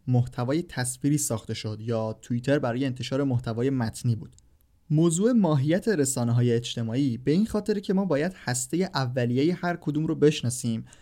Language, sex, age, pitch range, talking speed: Persian, male, 20-39, 120-155 Hz, 145 wpm